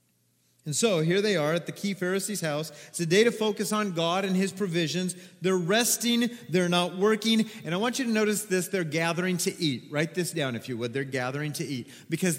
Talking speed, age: 230 wpm, 40-59